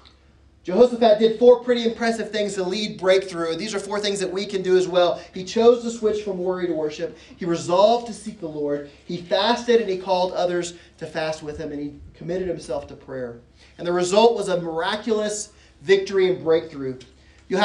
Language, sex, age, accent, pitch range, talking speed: English, male, 30-49, American, 170-215 Hz, 200 wpm